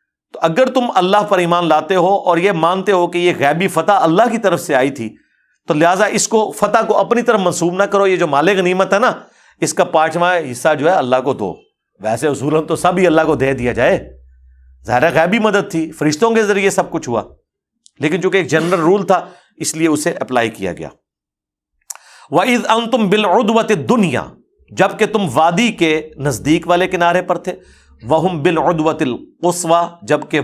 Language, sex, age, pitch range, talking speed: Urdu, male, 50-69, 145-190 Hz, 185 wpm